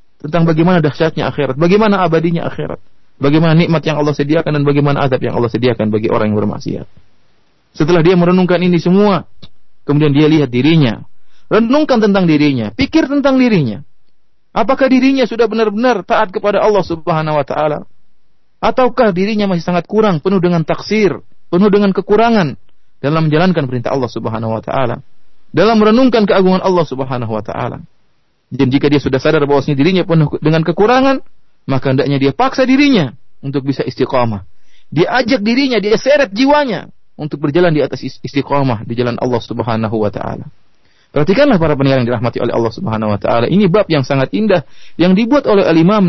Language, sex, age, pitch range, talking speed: Malay, male, 30-49, 135-190 Hz, 165 wpm